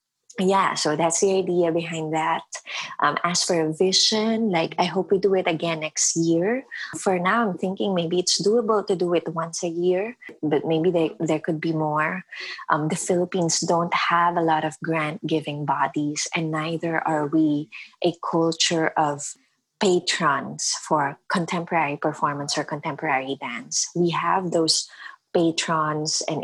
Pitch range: 155-180 Hz